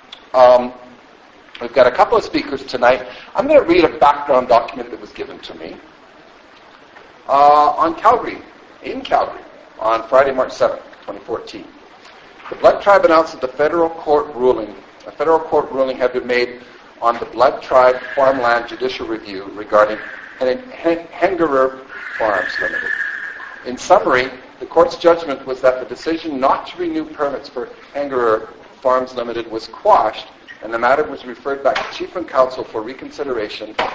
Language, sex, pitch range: English, male, 125-170 Hz